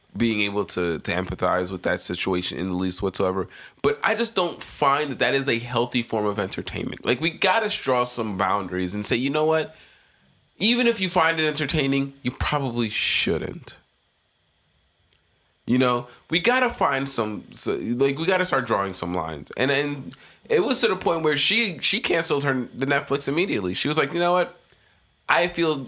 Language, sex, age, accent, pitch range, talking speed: English, male, 20-39, American, 100-150 Hz, 195 wpm